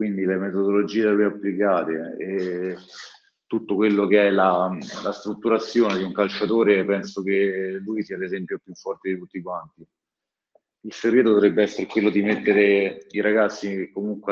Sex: male